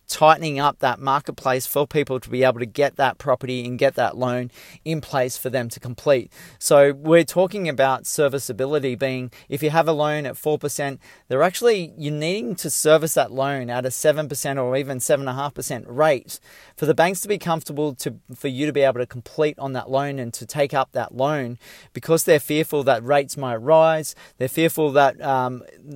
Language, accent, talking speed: English, Australian, 210 wpm